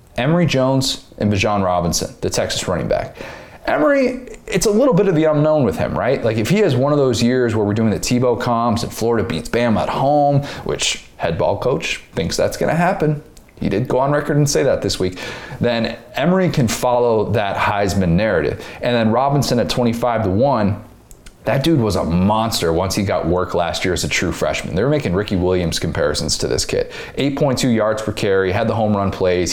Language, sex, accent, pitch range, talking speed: English, male, American, 95-130 Hz, 215 wpm